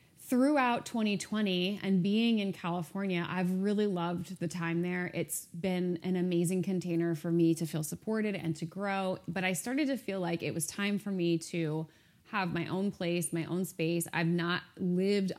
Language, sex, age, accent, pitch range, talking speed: English, female, 20-39, American, 170-205 Hz, 185 wpm